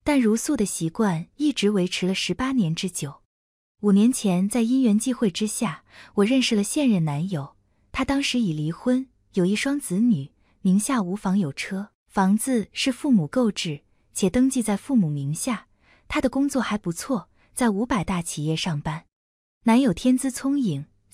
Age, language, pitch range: 20-39, Chinese, 170-250 Hz